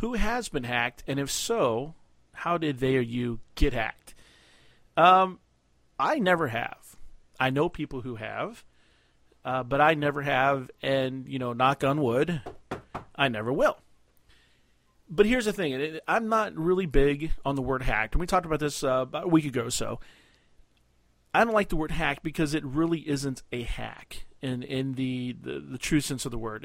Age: 40-59